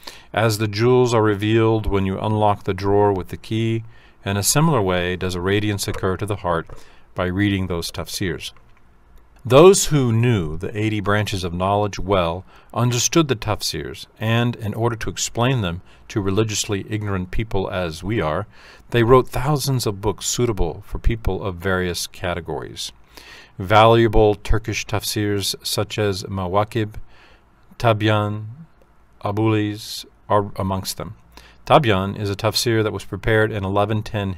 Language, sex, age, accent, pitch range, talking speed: English, male, 40-59, American, 95-115 Hz, 145 wpm